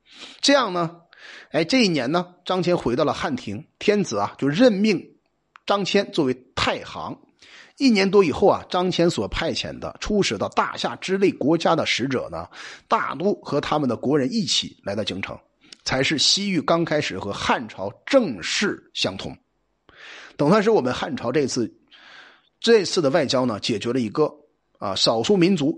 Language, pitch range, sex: Chinese, 150-215 Hz, male